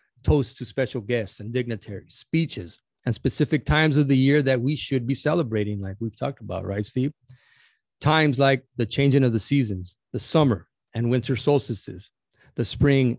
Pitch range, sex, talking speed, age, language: 110-135 Hz, male, 175 wpm, 30-49, English